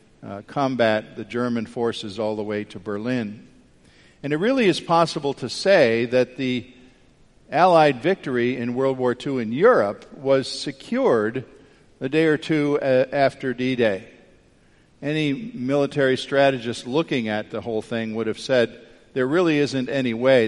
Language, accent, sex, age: English, American, male, 50-69